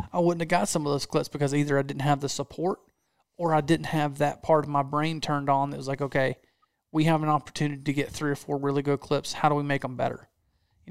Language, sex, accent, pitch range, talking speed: English, male, American, 140-160 Hz, 270 wpm